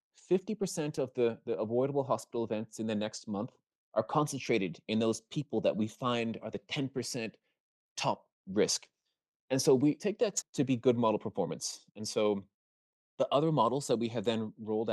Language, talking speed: English, 175 wpm